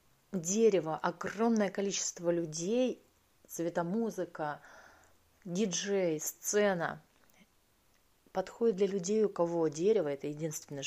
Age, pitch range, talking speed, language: 30-49, 155-195 Hz, 90 wpm, Russian